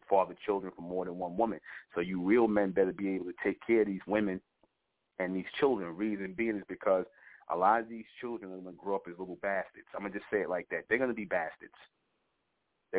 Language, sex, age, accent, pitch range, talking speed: English, male, 30-49, American, 95-105 Hz, 250 wpm